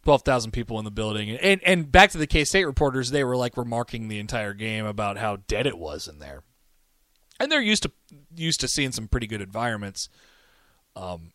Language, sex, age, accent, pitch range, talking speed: English, male, 20-39, American, 115-165 Hz, 200 wpm